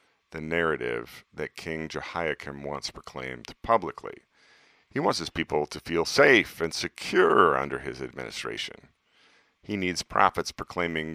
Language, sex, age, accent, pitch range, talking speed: English, male, 40-59, American, 75-95 Hz, 130 wpm